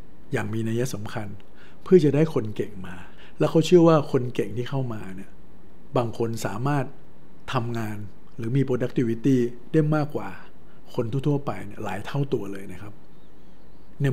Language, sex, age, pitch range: Thai, male, 60-79, 110-140 Hz